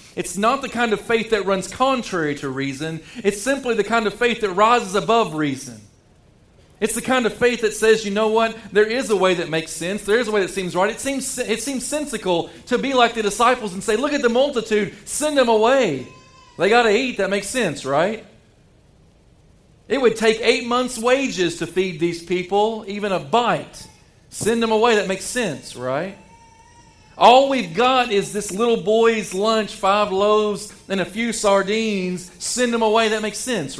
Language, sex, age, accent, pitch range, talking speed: English, male, 40-59, American, 155-225 Hz, 195 wpm